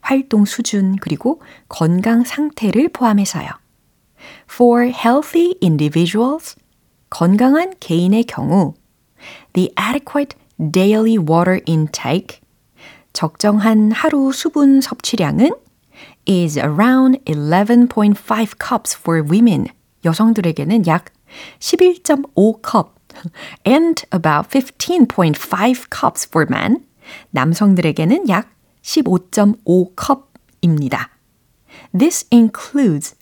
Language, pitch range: Korean, 170-265 Hz